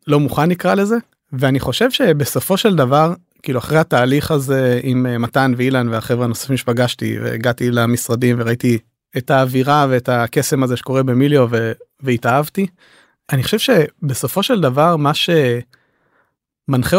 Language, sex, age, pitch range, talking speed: Hebrew, male, 30-49, 125-155 Hz, 135 wpm